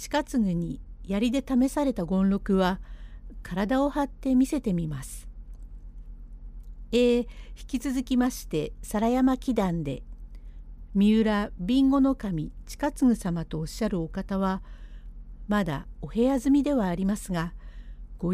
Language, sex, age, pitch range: Japanese, female, 50-69, 160-235 Hz